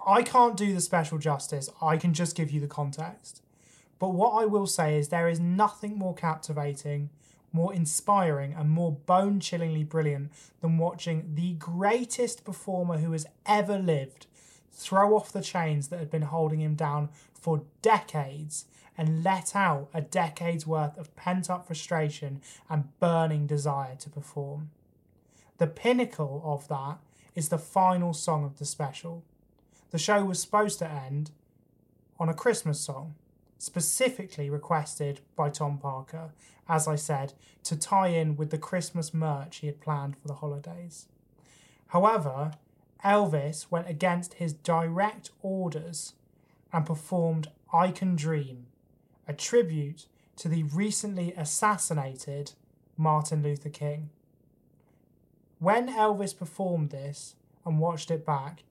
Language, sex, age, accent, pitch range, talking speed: English, male, 20-39, British, 150-175 Hz, 140 wpm